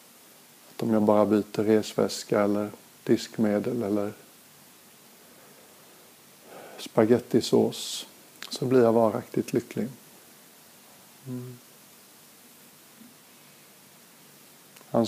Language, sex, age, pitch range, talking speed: Swedish, male, 50-69, 110-115 Hz, 60 wpm